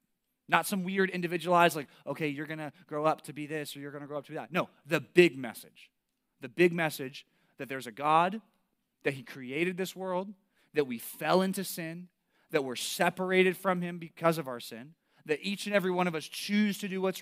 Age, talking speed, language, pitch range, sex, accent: 30-49, 225 wpm, English, 160-205 Hz, male, American